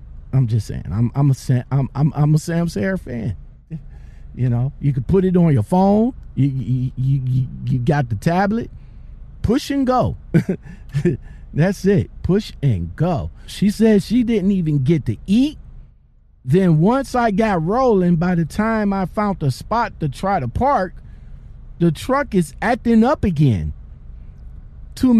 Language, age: English, 50-69